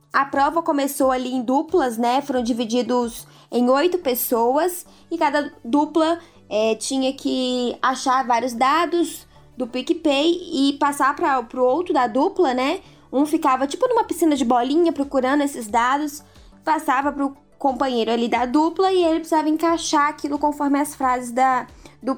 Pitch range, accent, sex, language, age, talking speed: 260-330 Hz, Brazilian, female, Portuguese, 10-29, 150 wpm